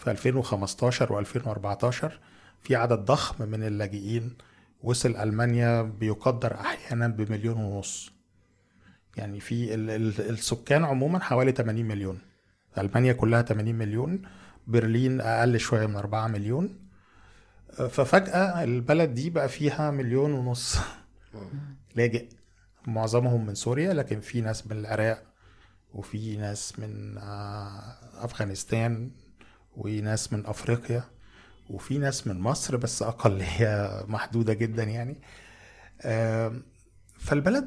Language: Arabic